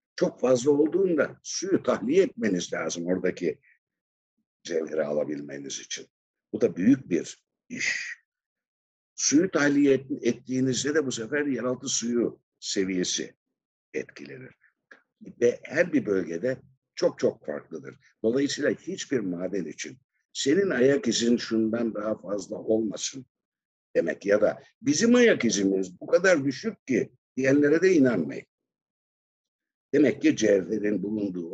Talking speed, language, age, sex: 115 wpm, Turkish, 60-79, male